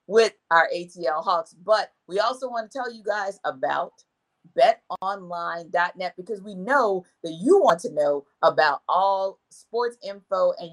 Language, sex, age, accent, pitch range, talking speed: English, female, 40-59, American, 180-260 Hz, 150 wpm